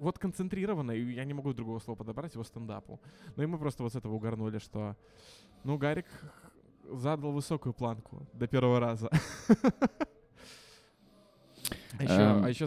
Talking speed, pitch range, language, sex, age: 145 wpm, 115-145 Hz, Russian, male, 20-39